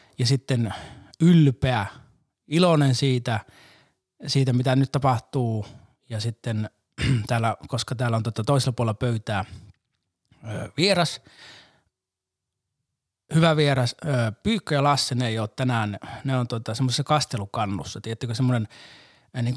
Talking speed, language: 105 wpm, Finnish